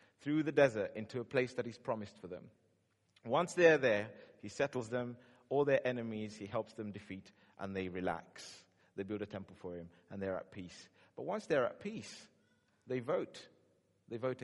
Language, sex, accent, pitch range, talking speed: English, male, British, 105-135 Hz, 190 wpm